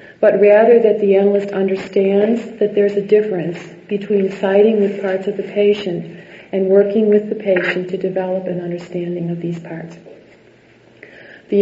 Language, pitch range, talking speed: English, 185-210 Hz, 155 wpm